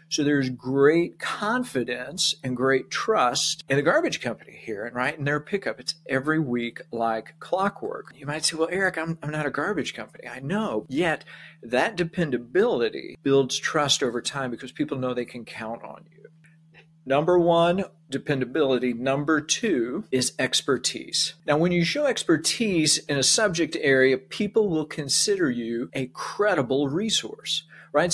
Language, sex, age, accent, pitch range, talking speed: English, male, 40-59, American, 130-165 Hz, 160 wpm